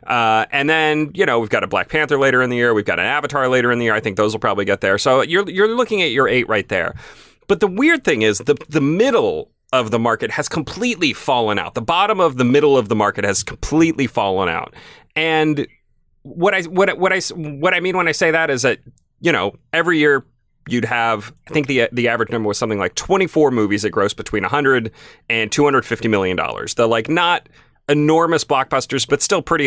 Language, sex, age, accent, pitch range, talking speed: English, male, 30-49, American, 115-165 Hz, 230 wpm